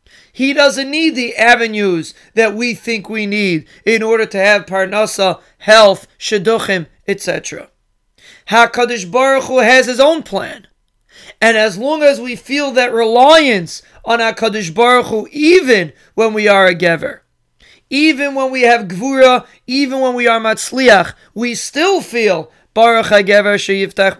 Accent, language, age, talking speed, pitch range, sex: American, English, 30-49, 145 wpm, 200-255 Hz, male